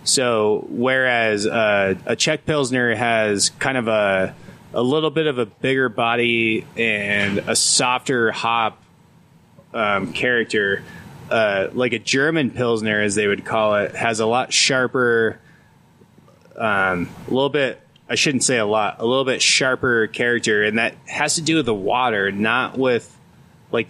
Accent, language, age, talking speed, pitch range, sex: American, English, 20-39, 155 wpm, 105-130 Hz, male